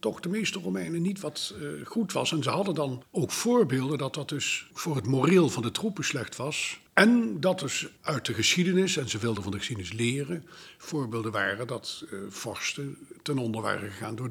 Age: 60-79